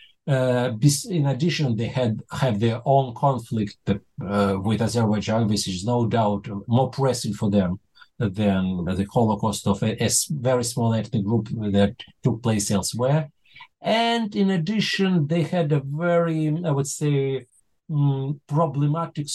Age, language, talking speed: 50-69, English, 145 wpm